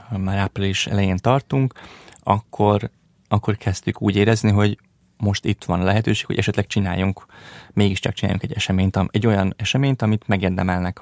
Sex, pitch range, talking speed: male, 95-115 Hz, 145 wpm